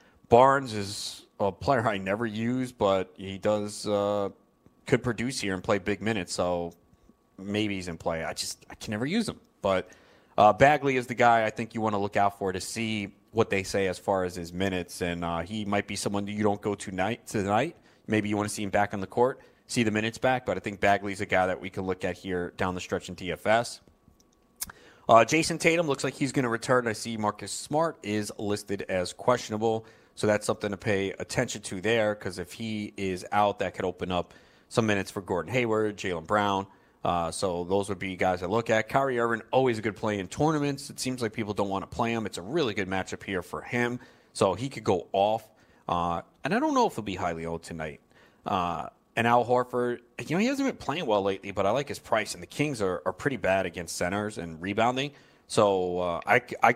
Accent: American